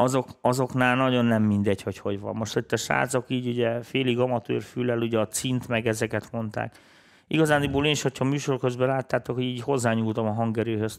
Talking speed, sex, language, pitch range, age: 190 wpm, male, Hungarian, 115-130 Hz, 40-59